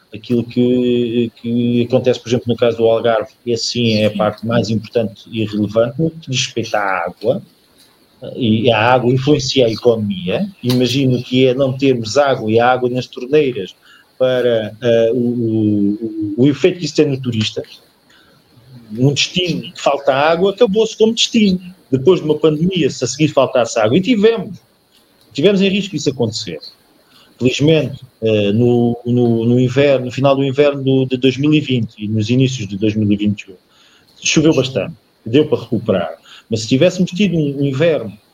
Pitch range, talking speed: 115-170 Hz, 155 wpm